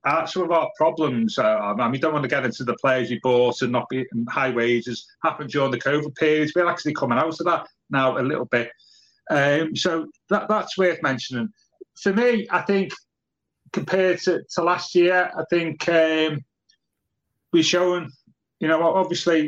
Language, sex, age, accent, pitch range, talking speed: English, male, 30-49, British, 145-170 Hz, 190 wpm